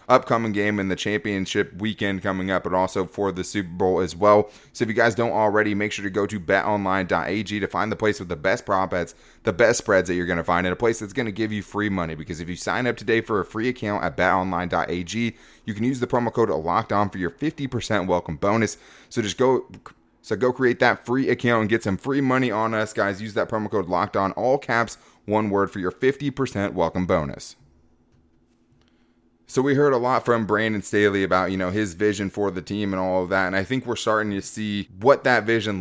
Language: English